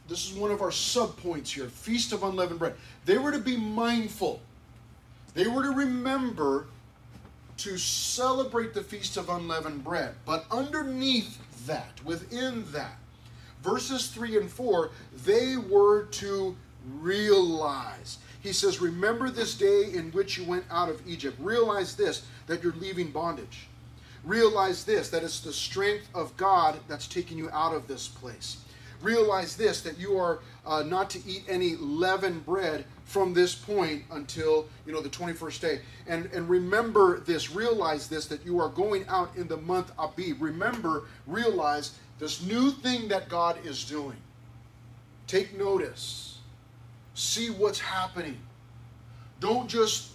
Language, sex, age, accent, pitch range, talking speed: English, male, 30-49, American, 140-210 Hz, 150 wpm